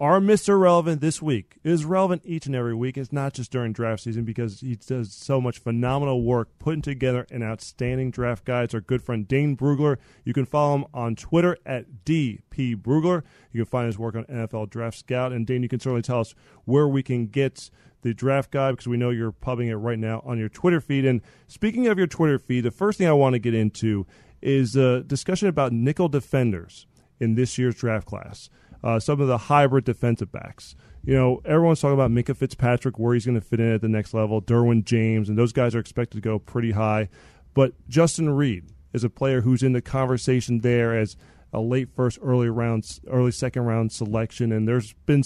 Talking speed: 220 wpm